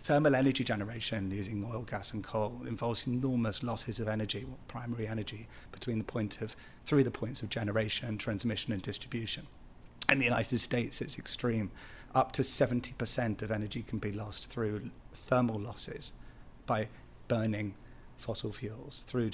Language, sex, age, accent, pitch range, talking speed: English, male, 30-49, British, 110-125 Hz, 150 wpm